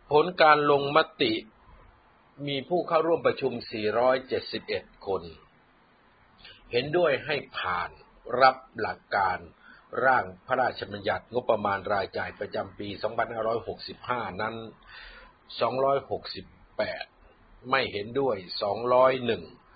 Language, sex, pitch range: Thai, male, 120-160 Hz